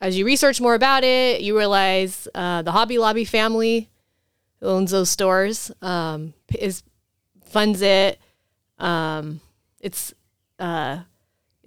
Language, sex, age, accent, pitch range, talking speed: English, female, 20-39, American, 175-215 Hz, 120 wpm